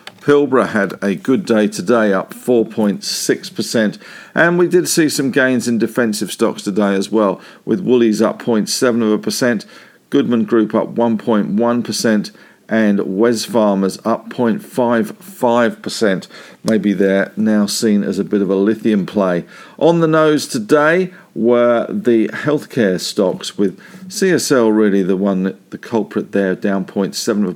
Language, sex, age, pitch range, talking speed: English, male, 50-69, 105-135 Hz, 135 wpm